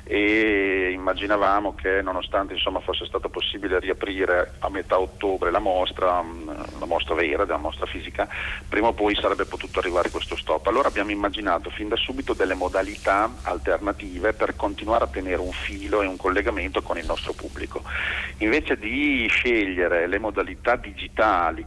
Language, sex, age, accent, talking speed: Italian, male, 40-59, native, 155 wpm